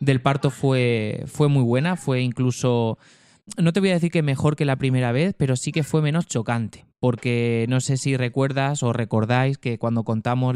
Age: 20-39